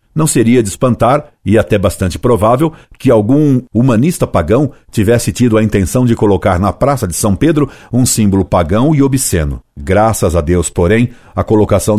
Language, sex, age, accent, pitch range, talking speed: Portuguese, male, 60-79, Brazilian, 100-125 Hz, 170 wpm